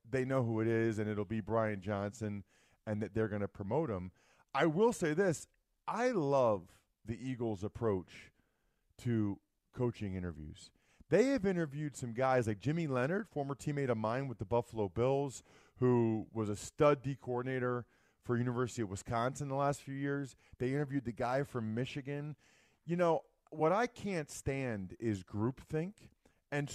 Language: English